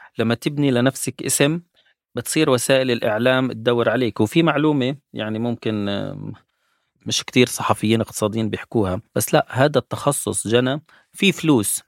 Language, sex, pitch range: Arabic, male, 105-130 Hz